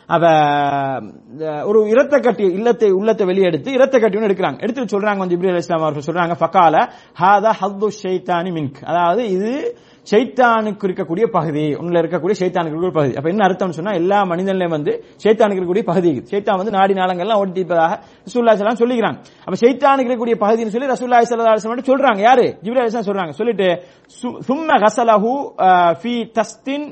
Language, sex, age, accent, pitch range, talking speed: English, male, 30-49, Indian, 175-230 Hz, 105 wpm